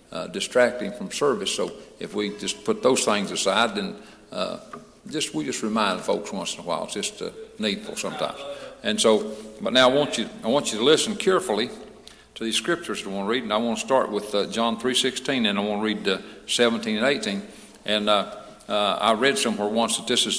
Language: English